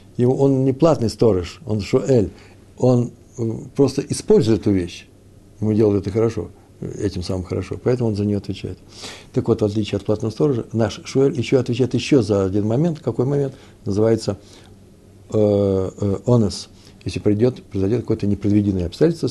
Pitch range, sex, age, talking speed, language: 100-130 Hz, male, 60-79, 150 wpm, Russian